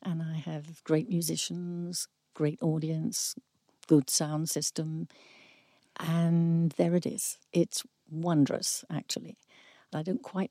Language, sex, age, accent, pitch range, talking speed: English, female, 60-79, British, 155-195 Hz, 115 wpm